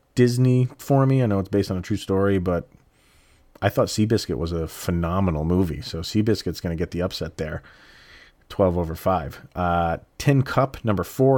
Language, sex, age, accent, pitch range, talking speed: English, male, 30-49, American, 90-115 Hz, 185 wpm